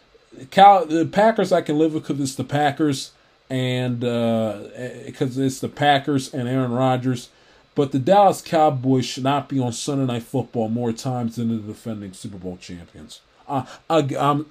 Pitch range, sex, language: 125-155 Hz, male, English